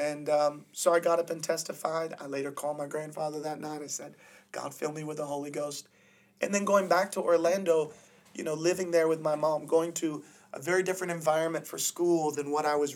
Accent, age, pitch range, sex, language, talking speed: American, 30-49, 145-175 Hz, male, English, 225 wpm